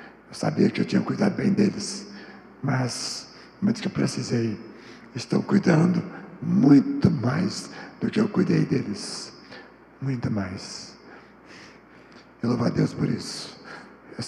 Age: 60-79